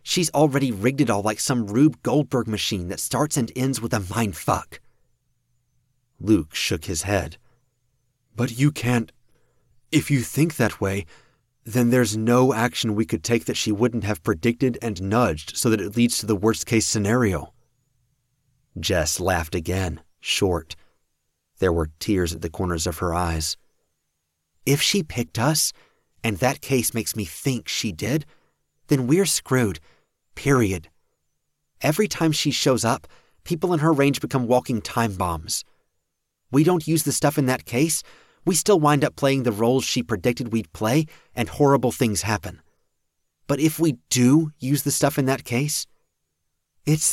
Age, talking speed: 30-49, 165 wpm